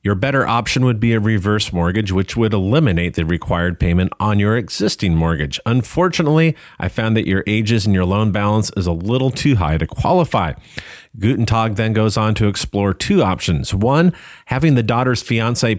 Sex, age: male, 40-59